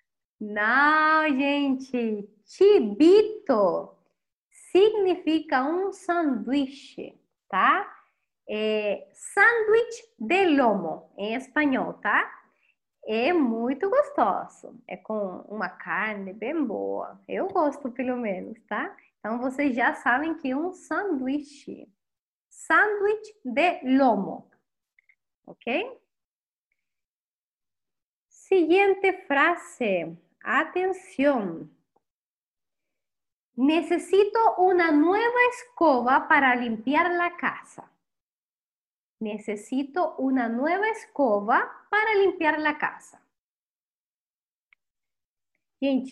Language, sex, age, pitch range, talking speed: Portuguese, female, 20-39, 235-360 Hz, 75 wpm